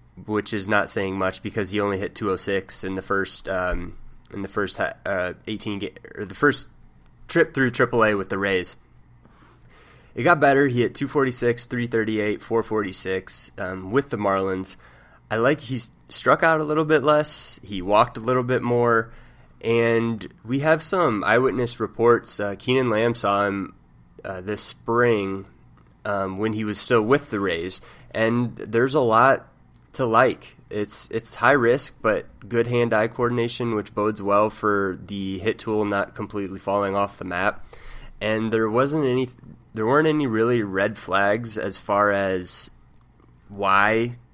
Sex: male